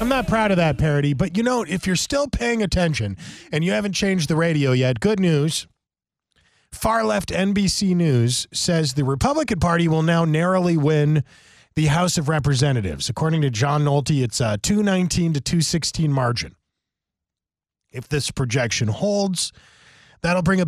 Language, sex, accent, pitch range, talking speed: English, male, American, 125-175 Hz, 160 wpm